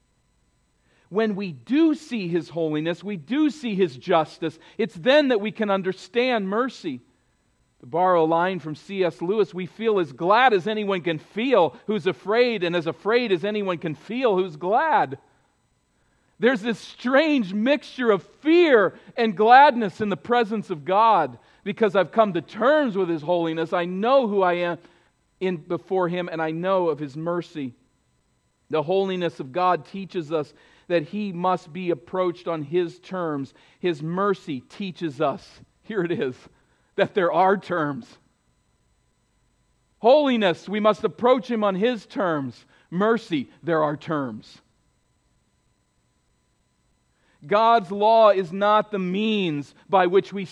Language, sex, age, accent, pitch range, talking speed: English, male, 50-69, American, 165-215 Hz, 145 wpm